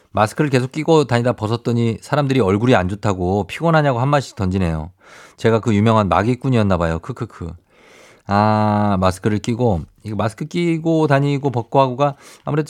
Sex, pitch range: male, 95-130 Hz